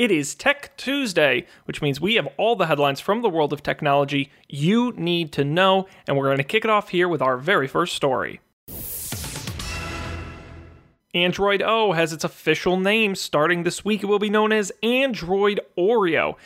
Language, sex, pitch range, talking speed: English, male, 135-175 Hz, 180 wpm